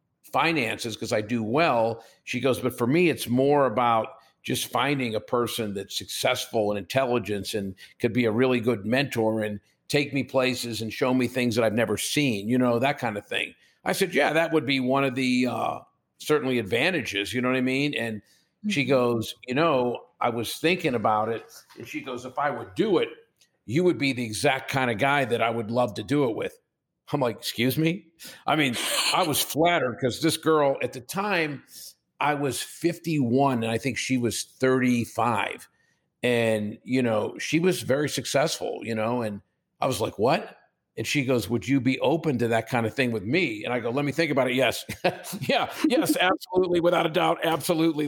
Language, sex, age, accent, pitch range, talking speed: English, male, 50-69, American, 115-145 Hz, 205 wpm